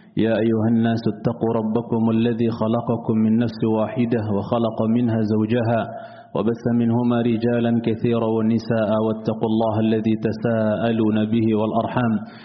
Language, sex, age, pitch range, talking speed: Indonesian, male, 30-49, 110-120 Hz, 115 wpm